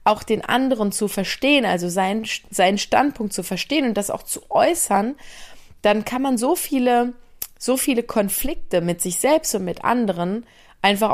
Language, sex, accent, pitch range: German, female, German, 180-245 Hz